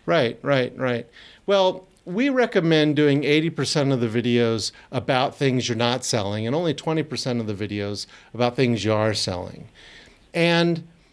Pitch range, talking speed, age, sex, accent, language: 120-165 Hz, 150 wpm, 50-69, male, American, English